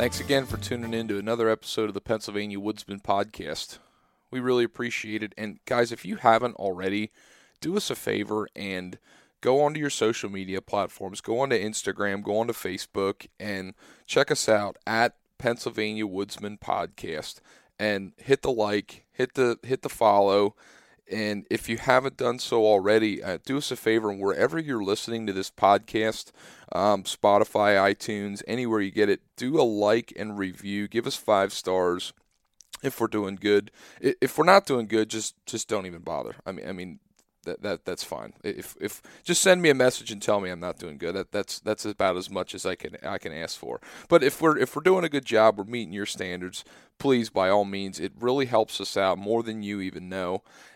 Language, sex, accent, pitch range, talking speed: English, male, American, 100-120 Hz, 195 wpm